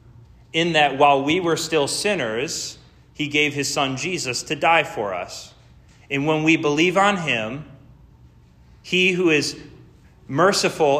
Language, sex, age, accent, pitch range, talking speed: English, male, 30-49, American, 110-145 Hz, 140 wpm